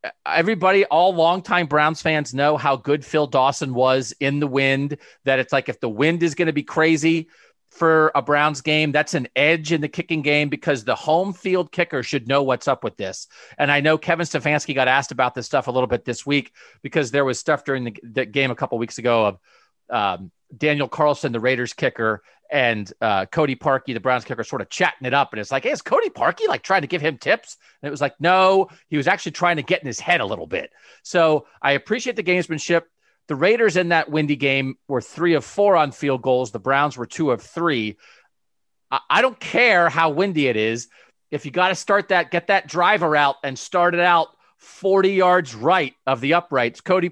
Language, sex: English, male